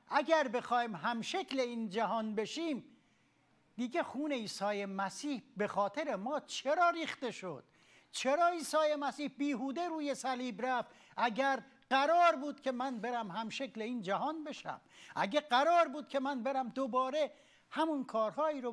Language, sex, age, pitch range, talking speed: Persian, male, 60-79, 210-280 Hz, 140 wpm